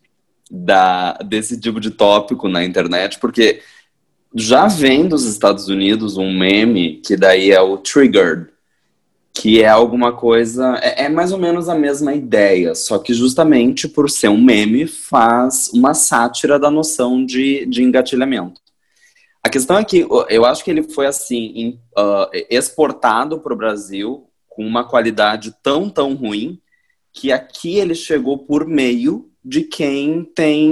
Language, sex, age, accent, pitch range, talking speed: Portuguese, male, 20-39, Brazilian, 105-145 Hz, 145 wpm